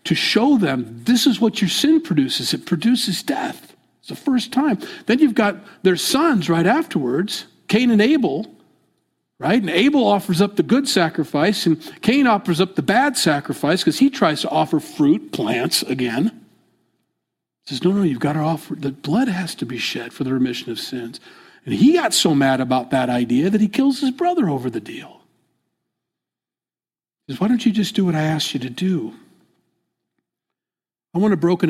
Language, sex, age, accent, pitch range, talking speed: English, male, 50-69, American, 150-225 Hz, 190 wpm